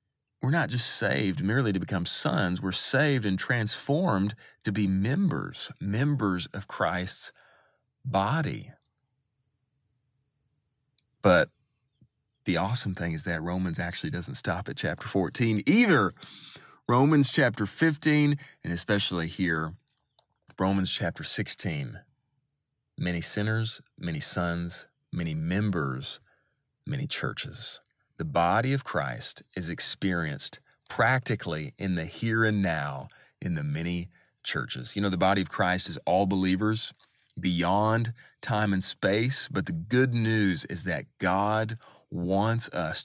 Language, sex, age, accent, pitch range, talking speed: English, male, 30-49, American, 90-130 Hz, 125 wpm